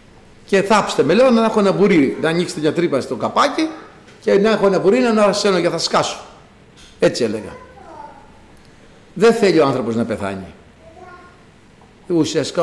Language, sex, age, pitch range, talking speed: Greek, male, 60-79, 135-225 Hz, 165 wpm